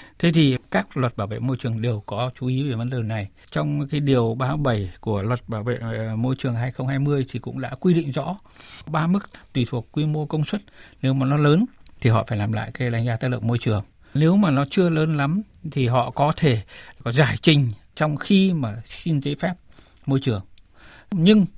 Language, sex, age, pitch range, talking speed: Vietnamese, male, 60-79, 120-155 Hz, 220 wpm